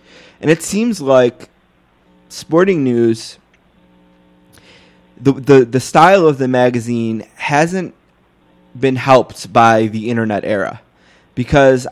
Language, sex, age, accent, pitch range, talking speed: English, male, 20-39, American, 115-135 Hz, 105 wpm